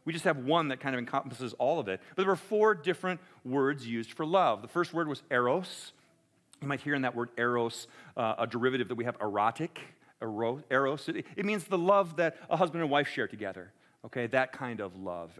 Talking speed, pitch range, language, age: 225 wpm, 130-170 Hz, English, 40-59